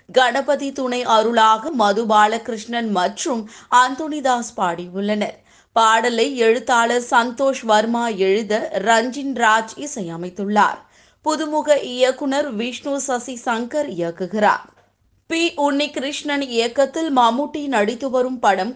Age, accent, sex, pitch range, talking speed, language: 20-39, native, female, 215-265 Hz, 95 wpm, Tamil